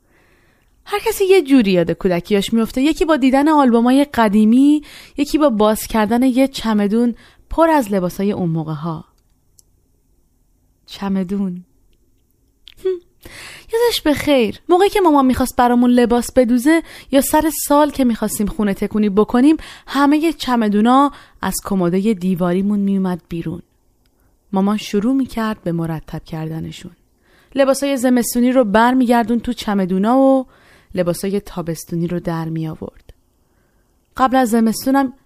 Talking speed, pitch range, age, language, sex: 125 wpm, 170-275 Hz, 30-49, Persian, female